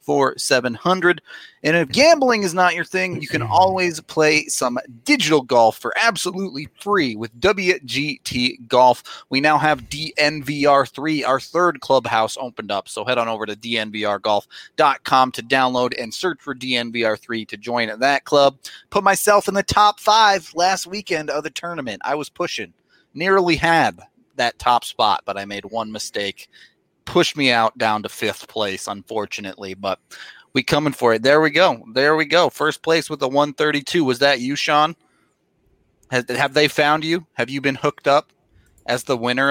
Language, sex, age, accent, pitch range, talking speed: English, male, 30-49, American, 120-160 Hz, 170 wpm